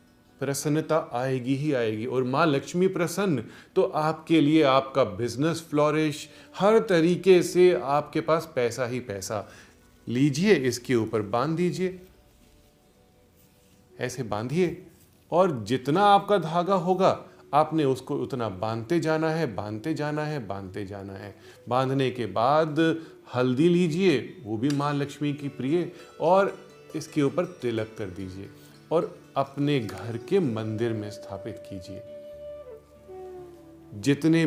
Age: 30-49